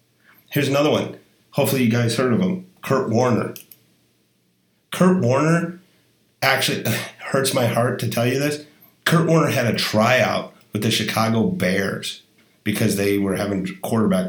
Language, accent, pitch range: English, American, 105-140 Hz